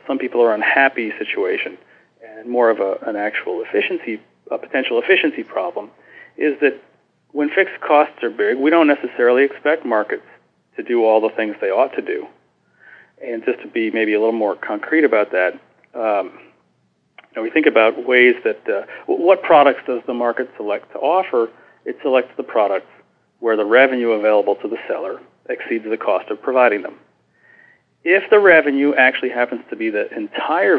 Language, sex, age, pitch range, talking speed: English, male, 40-59, 110-155 Hz, 170 wpm